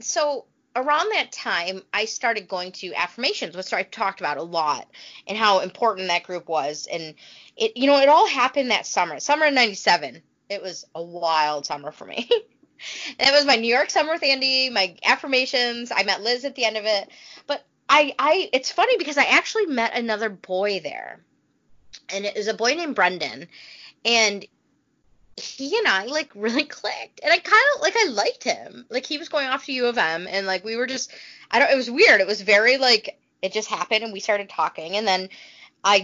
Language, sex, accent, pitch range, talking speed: English, female, American, 190-275 Hz, 210 wpm